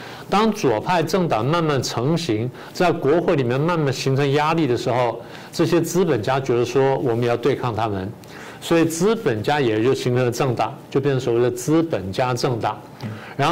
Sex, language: male, Chinese